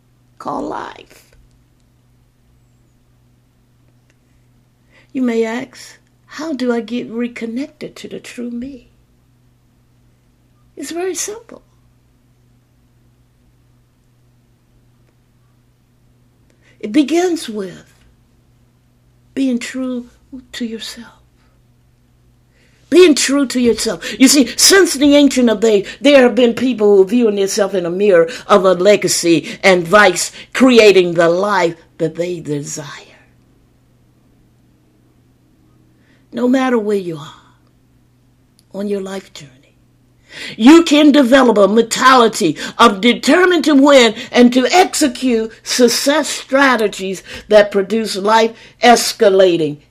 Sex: female